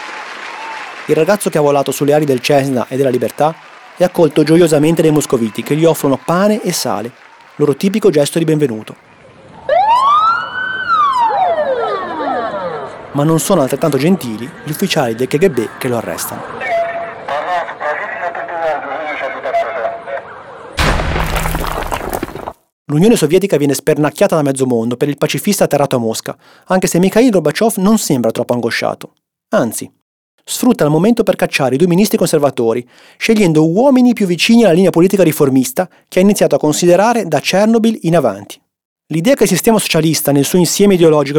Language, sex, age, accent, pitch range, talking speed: Italian, male, 30-49, native, 140-195 Hz, 140 wpm